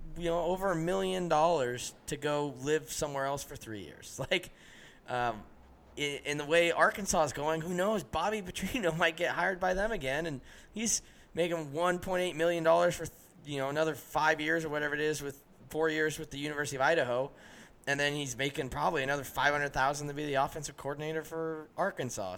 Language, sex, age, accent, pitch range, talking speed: English, male, 20-39, American, 125-165 Hz, 190 wpm